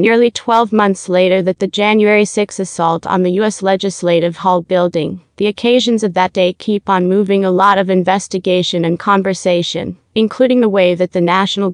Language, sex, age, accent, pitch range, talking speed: English, female, 30-49, American, 180-210 Hz, 180 wpm